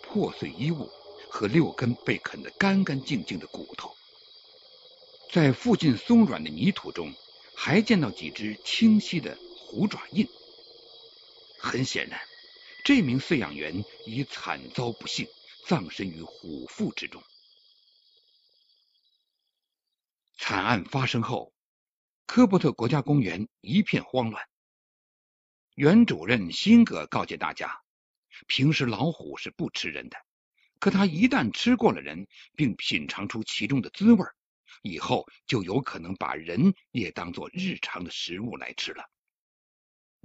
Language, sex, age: Chinese, male, 60-79